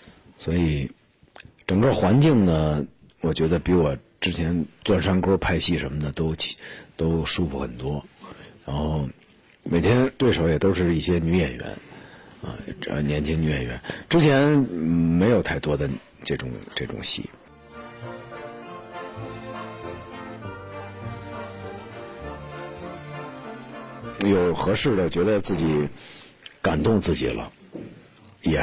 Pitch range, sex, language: 75-100 Hz, male, Chinese